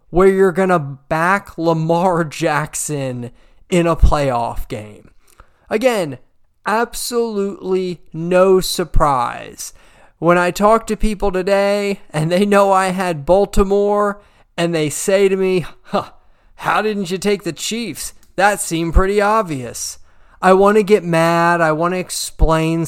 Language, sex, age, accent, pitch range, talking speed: English, male, 30-49, American, 150-205 Hz, 135 wpm